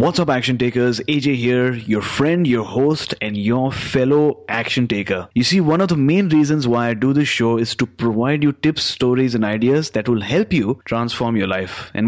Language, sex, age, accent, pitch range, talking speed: English, male, 30-49, Indian, 115-140 Hz, 215 wpm